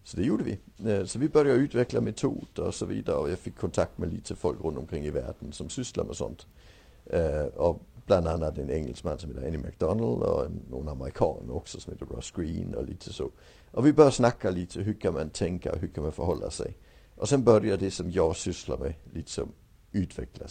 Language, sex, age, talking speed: English, male, 60-79, 205 wpm